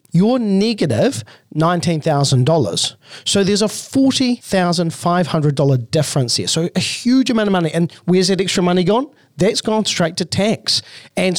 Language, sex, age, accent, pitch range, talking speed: English, male, 40-59, Australian, 130-170 Hz, 180 wpm